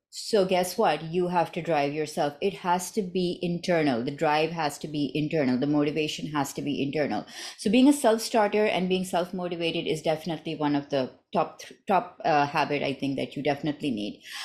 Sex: female